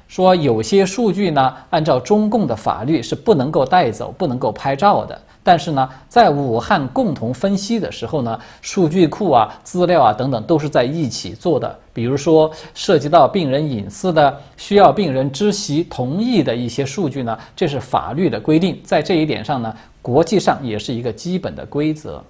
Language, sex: Chinese, male